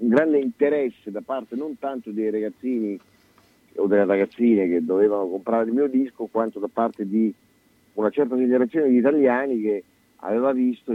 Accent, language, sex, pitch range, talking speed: native, Italian, male, 105-125 Hz, 165 wpm